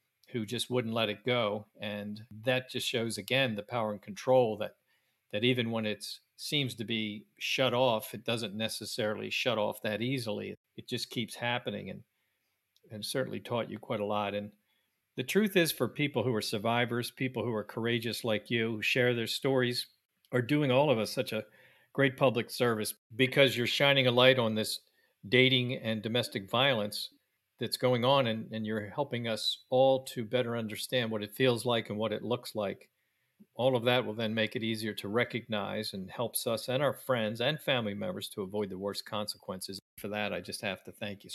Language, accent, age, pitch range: English, American, 50-69, 105-125 Hz